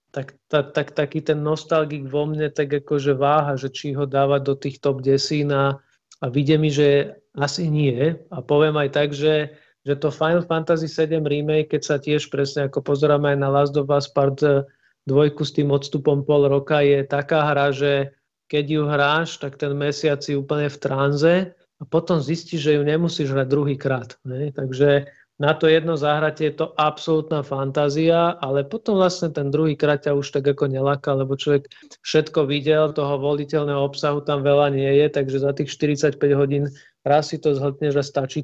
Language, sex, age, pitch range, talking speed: Slovak, male, 40-59, 140-155 Hz, 185 wpm